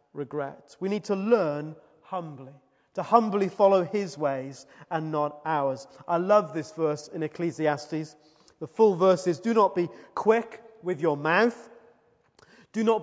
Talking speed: 150 wpm